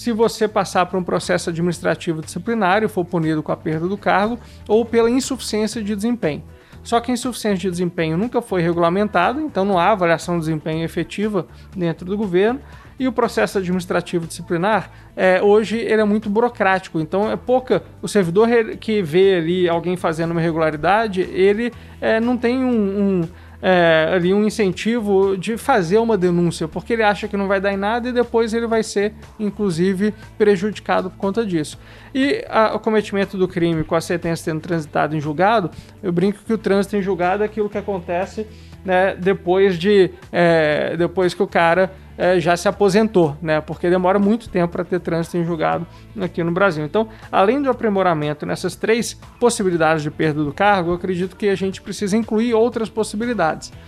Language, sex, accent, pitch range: Portuguese, male, Brazilian, 175-215 Hz